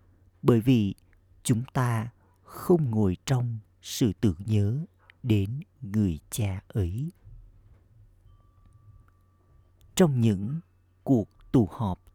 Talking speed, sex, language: 95 wpm, male, Vietnamese